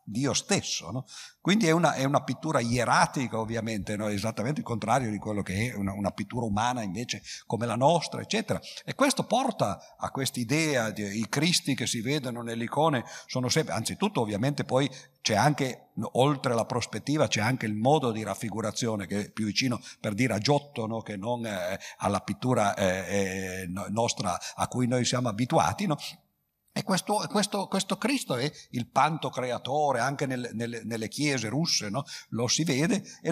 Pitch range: 110-145 Hz